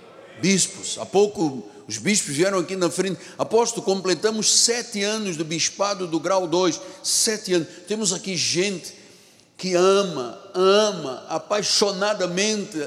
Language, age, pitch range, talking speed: Portuguese, 60-79, 165-225 Hz, 125 wpm